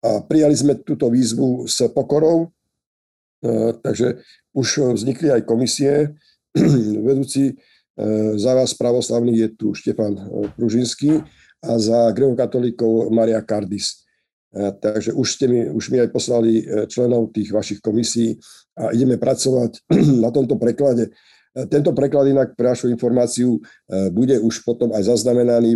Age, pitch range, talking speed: 50-69, 105-125 Hz, 125 wpm